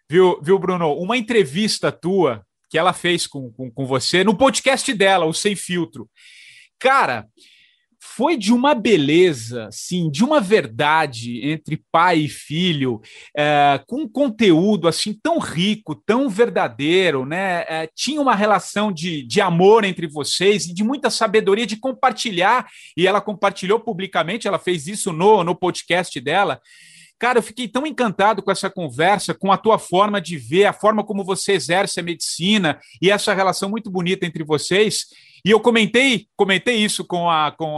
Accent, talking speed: Brazilian, 160 wpm